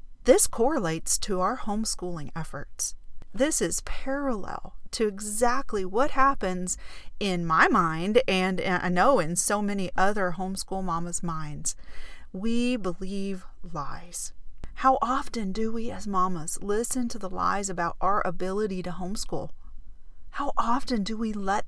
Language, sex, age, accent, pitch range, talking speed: English, female, 40-59, American, 175-240 Hz, 140 wpm